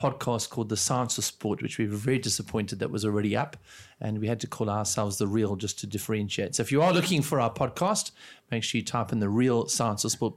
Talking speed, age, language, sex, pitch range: 255 wpm, 30-49, English, male, 115-150 Hz